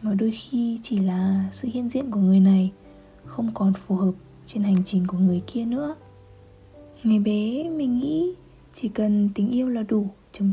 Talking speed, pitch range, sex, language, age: 190 wpm, 195-255 Hz, female, Vietnamese, 20-39